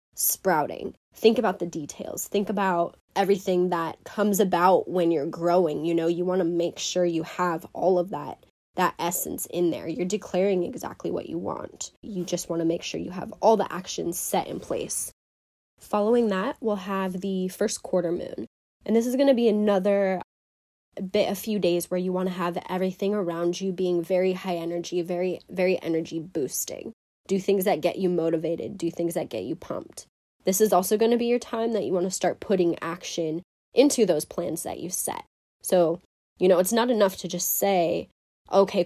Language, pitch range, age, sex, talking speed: English, 170-195 Hz, 20-39, female, 200 wpm